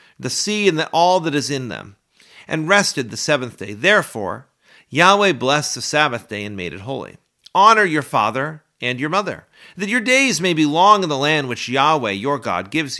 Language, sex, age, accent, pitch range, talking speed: English, male, 40-59, American, 125-175 Hz, 200 wpm